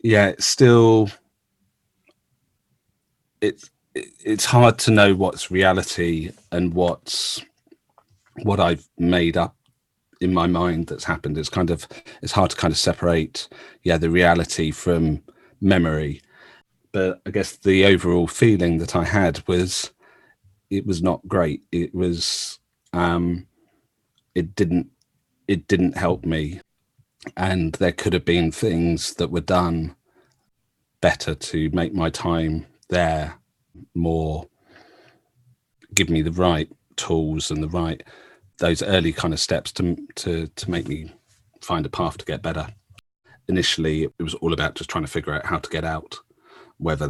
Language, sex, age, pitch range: English, male, 40-59, 80-95 Hz